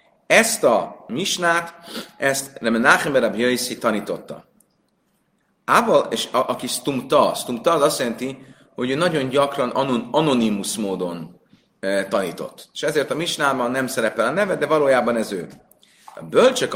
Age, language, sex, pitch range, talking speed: 30-49, Hungarian, male, 110-150 Hz, 140 wpm